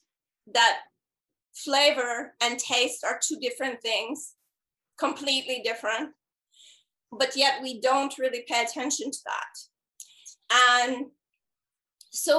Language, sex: English, female